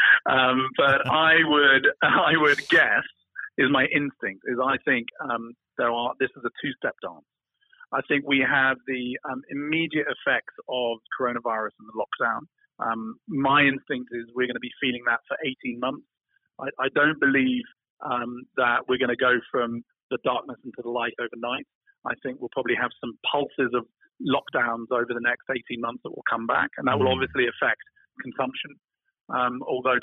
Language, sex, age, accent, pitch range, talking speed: English, male, 40-59, British, 120-140 Hz, 180 wpm